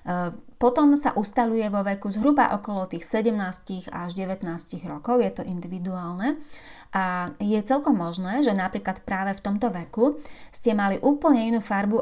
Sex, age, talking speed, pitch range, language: female, 30-49, 150 wpm, 185-230 Hz, Slovak